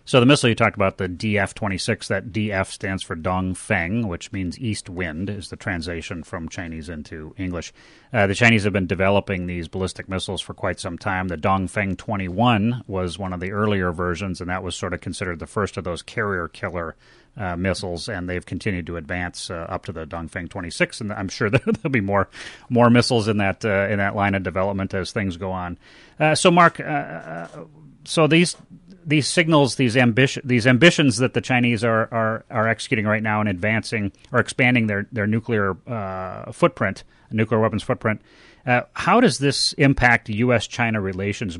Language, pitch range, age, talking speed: English, 95-125 Hz, 30-49, 190 wpm